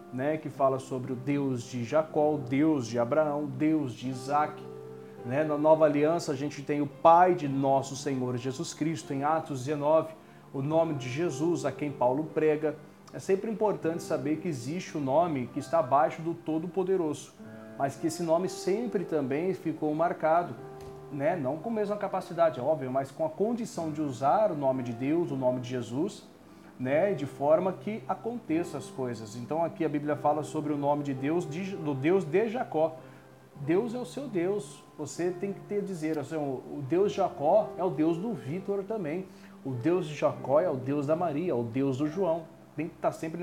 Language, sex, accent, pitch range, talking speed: Portuguese, male, Brazilian, 140-175 Hz, 200 wpm